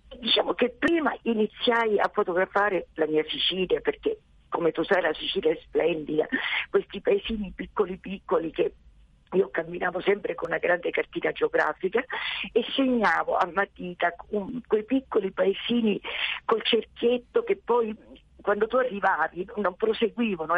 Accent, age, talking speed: native, 50-69, 135 wpm